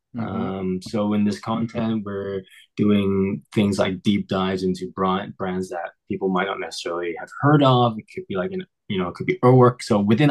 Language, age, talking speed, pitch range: English, 20-39, 200 wpm, 95-115 Hz